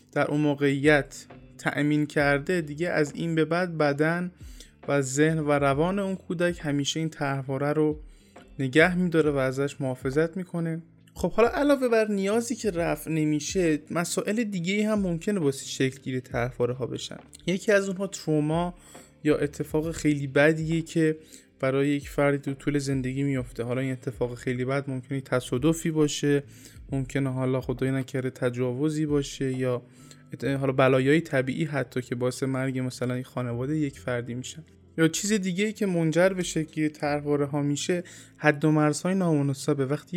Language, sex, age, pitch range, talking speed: Persian, male, 20-39, 135-165 Hz, 160 wpm